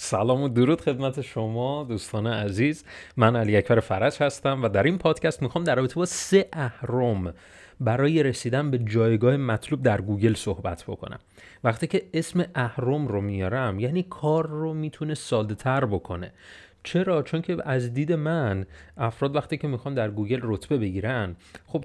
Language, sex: Persian, male